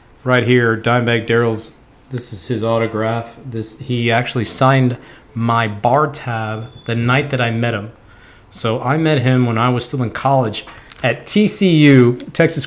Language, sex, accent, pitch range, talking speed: English, male, American, 115-135 Hz, 160 wpm